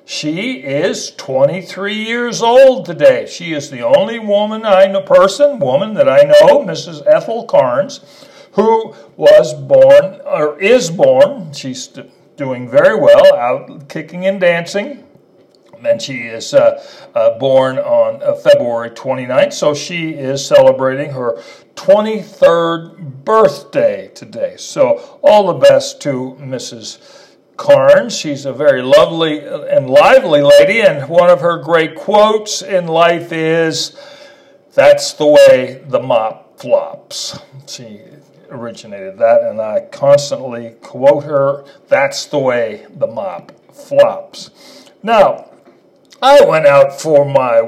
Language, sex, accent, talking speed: English, male, American, 130 wpm